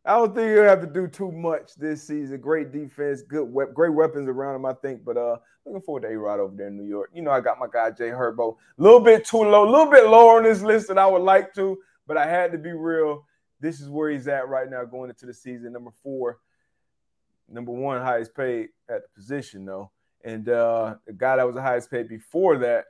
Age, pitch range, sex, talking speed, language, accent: 20-39, 125-170 Hz, male, 255 wpm, English, American